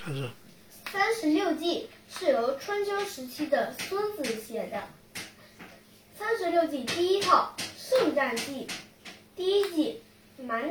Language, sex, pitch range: Chinese, female, 290-405 Hz